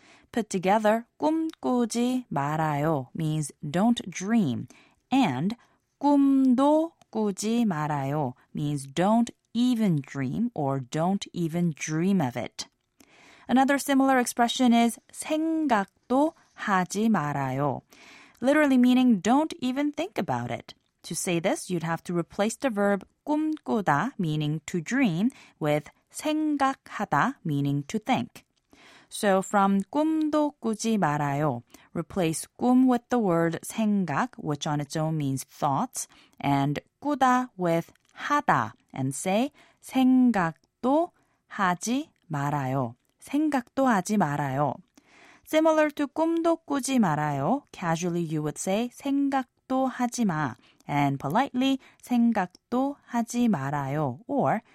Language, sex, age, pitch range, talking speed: English, female, 20-39, 155-260 Hz, 110 wpm